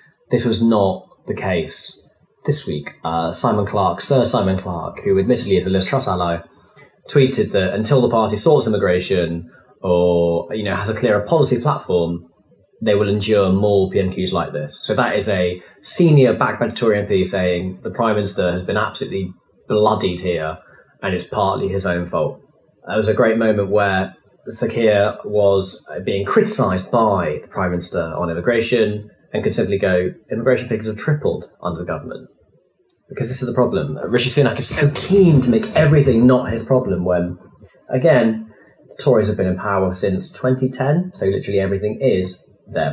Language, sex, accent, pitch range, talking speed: English, male, British, 90-120 Hz, 170 wpm